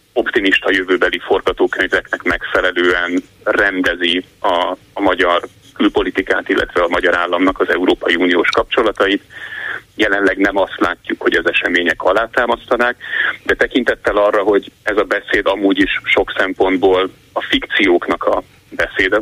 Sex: male